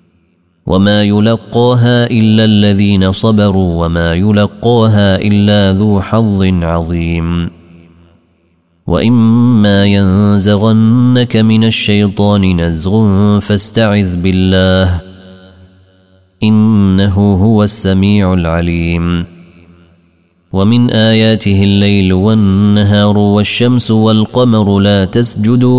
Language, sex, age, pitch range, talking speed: Arabic, male, 30-49, 95-110 Hz, 70 wpm